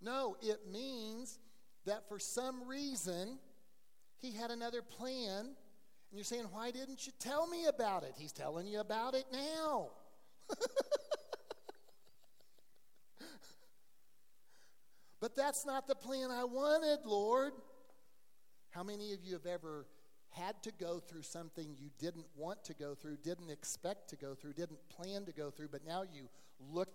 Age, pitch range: 50-69, 155-235 Hz